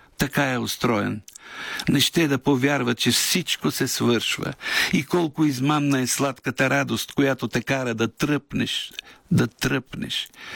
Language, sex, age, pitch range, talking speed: Bulgarian, male, 60-79, 110-135 Hz, 135 wpm